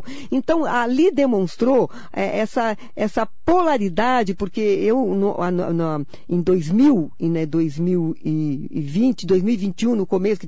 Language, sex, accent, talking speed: Portuguese, female, Brazilian, 120 wpm